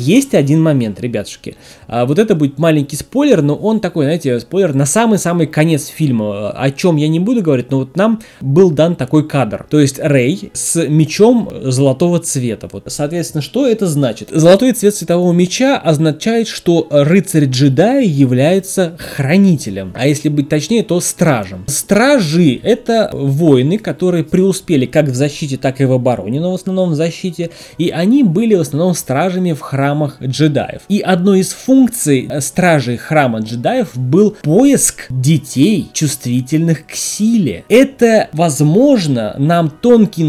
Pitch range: 140-190 Hz